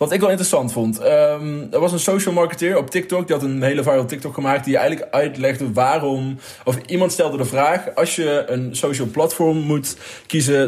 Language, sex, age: Dutch, male, 20-39